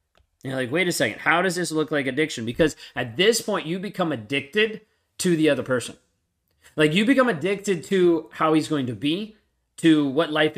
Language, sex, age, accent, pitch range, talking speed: English, male, 30-49, American, 140-180 Hz, 200 wpm